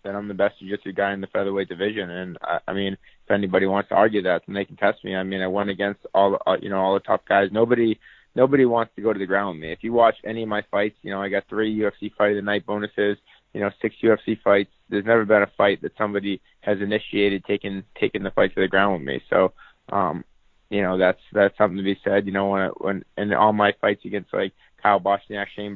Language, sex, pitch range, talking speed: English, male, 95-100 Hz, 260 wpm